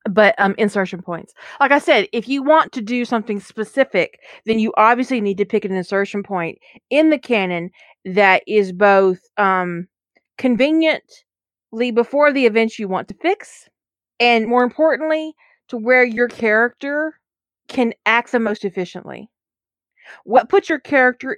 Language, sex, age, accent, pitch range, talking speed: English, female, 30-49, American, 195-260 Hz, 150 wpm